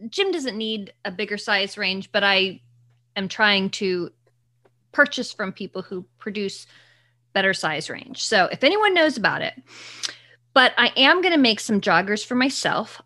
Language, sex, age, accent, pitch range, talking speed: English, female, 30-49, American, 195-235 Hz, 165 wpm